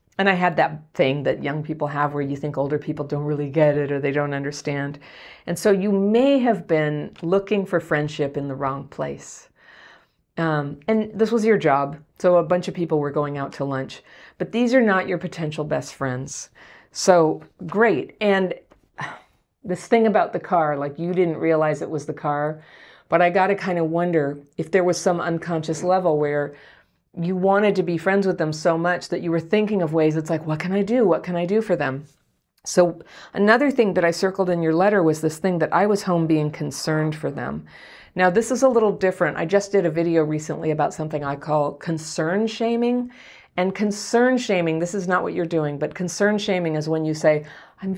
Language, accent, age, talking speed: English, American, 50-69, 215 wpm